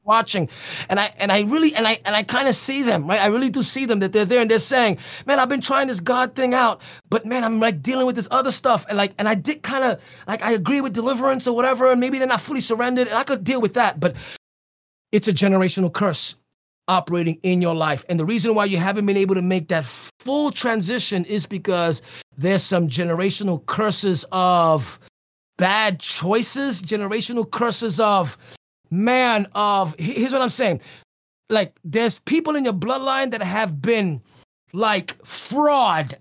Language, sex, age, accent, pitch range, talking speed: English, male, 30-49, American, 185-255 Hz, 200 wpm